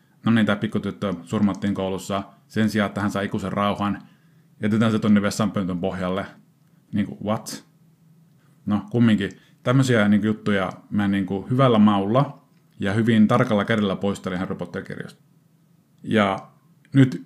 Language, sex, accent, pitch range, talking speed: Finnish, male, native, 105-140 Hz, 130 wpm